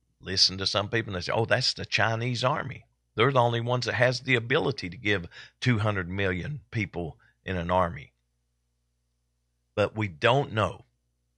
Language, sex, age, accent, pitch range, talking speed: English, male, 50-69, American, 90-125 Hz, 170 wpm